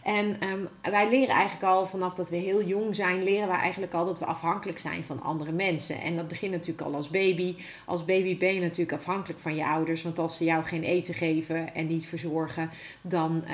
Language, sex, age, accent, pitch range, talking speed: Dutch, female, 40-59, Dutch, 165-195 Hz, 220 wpm